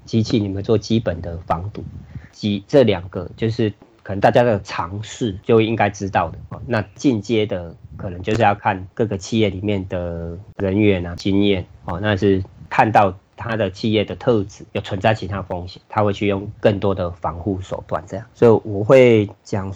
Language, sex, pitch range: Chinese, male, 95-110 Hz